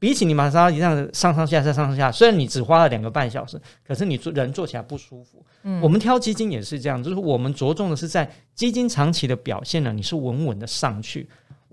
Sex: male